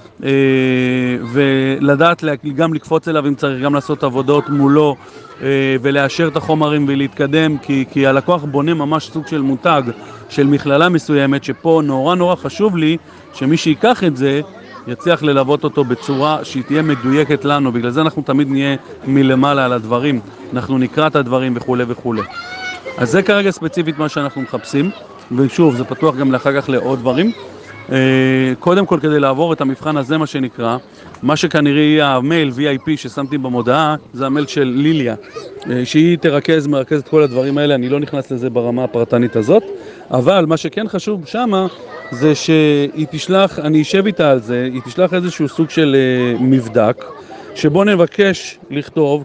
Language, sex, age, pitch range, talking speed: Hebrew, male, 40-59, 130-160 Hz, 155 wpm